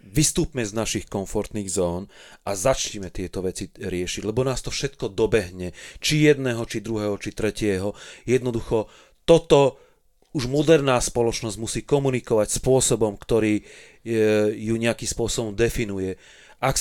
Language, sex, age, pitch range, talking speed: Slovak, male, 30-49, 105-125 Hz, 125 wpm